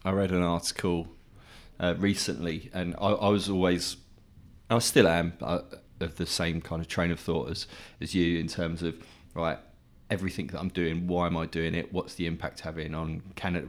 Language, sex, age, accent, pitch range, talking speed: English, male, 30-49, British, 85-95 Hz, 195 wpm